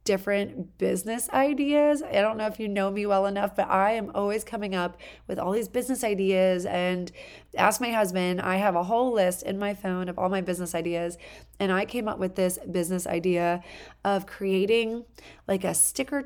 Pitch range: 190-240 Hz